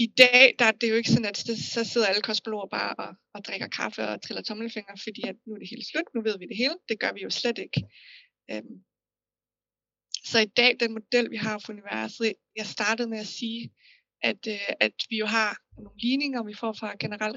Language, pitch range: Danish, 215-245 Hz